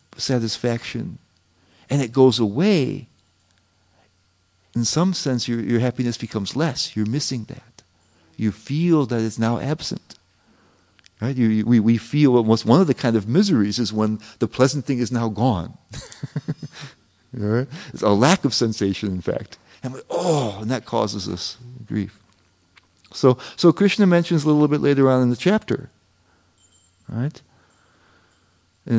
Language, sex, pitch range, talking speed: English, male, 95-130 Hz, 145 wpm